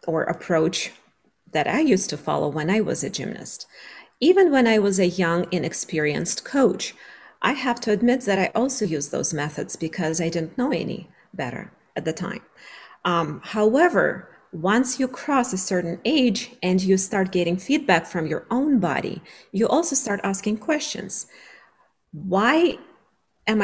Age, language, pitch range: 40-59, English, 170-225 Hz